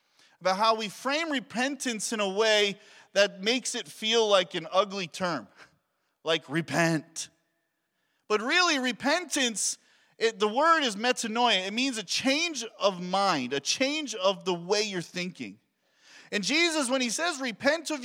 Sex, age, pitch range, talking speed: male, 40-59, 190-260 Hz, 150 wpm